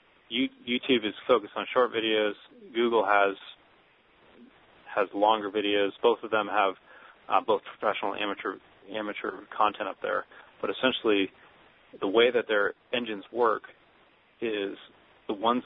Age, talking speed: 30-49, 135 wpm